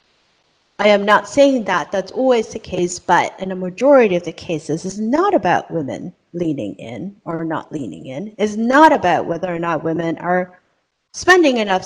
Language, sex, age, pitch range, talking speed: English, female, 30-49, 175-230 Hz, 180 wpm